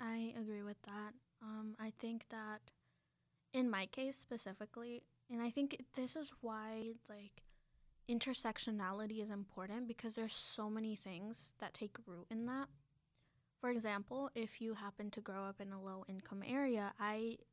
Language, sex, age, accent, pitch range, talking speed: English, female, 10-29, American, 205-240 Hz, 160 wpm